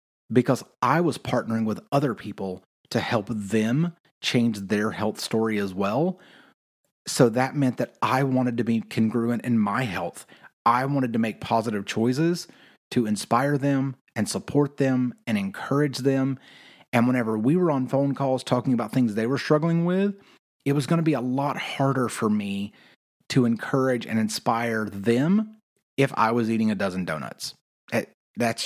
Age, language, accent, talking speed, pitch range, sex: 30-49, English, American, 165 wpm, 105-135 Hz, male